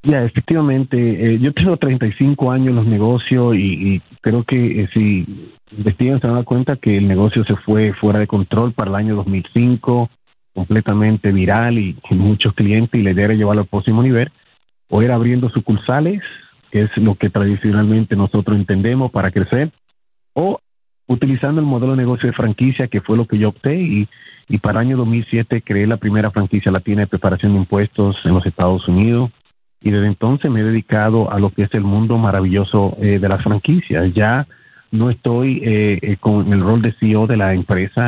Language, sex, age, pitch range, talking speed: Spanish, male, 40-59, 100-125 Hz, 190 wpm